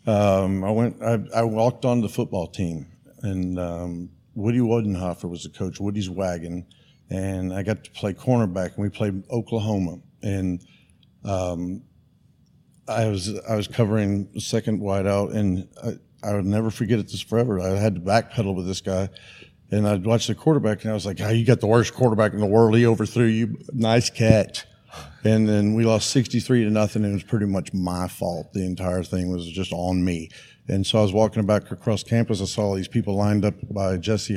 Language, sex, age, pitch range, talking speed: English, male, 50-69, 95-115 Hz, 205 wpm